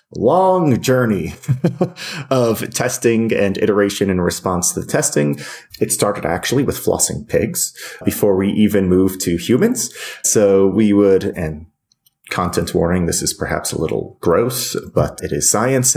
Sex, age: male, 30-49